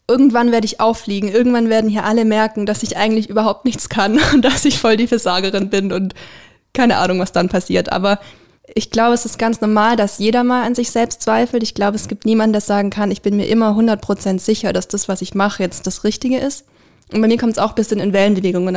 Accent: German